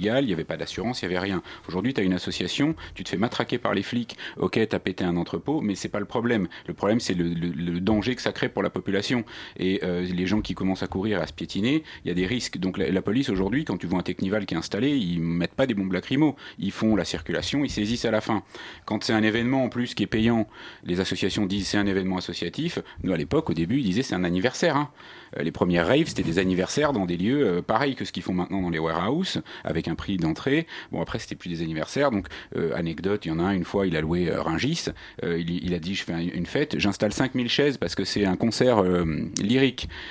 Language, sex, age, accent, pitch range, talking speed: French, male, 40-59, French, 90-110 Hz, 270 wpm